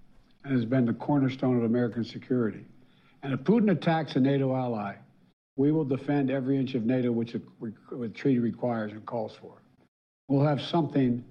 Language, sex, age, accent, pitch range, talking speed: English, male, 60-79, American, 120-145 Hz, 170 wpm